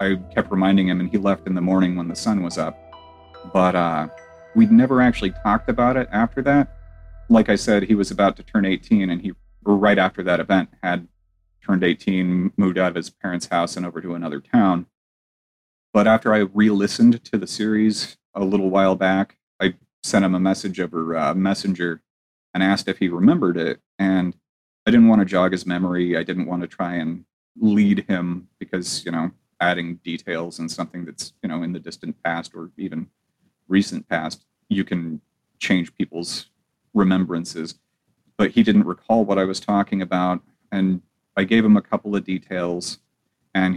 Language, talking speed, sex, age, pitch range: English, 190 wpm, male, 30-49, 90-110 Hz